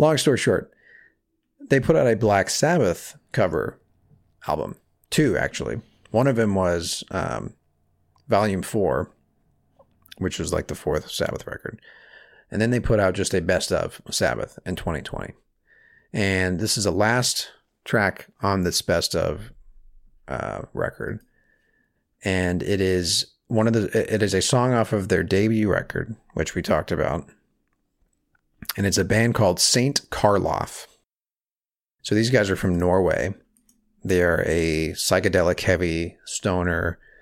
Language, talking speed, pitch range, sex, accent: English, 145 wpm, 90-120 Hz, male, American